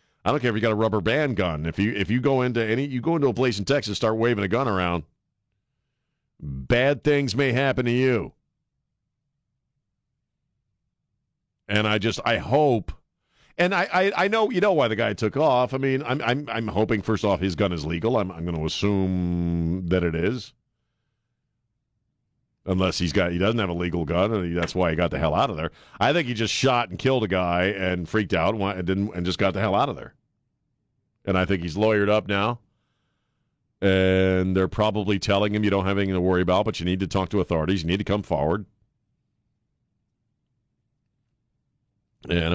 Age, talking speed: 50-69, 205 wpm